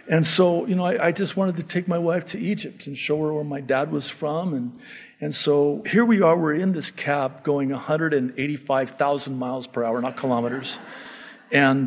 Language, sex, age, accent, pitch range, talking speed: English, male, 50-69, American, 140-190 Hz, 200 wpm